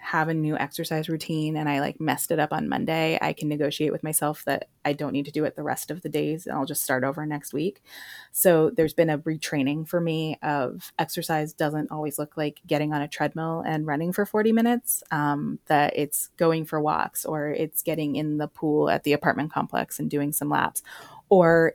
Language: English